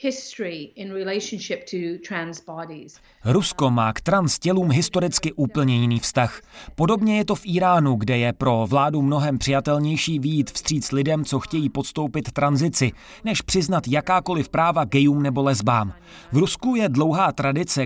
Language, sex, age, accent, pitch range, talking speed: Czech, male, 30-49, native, 135-160 Hz, 130 wpm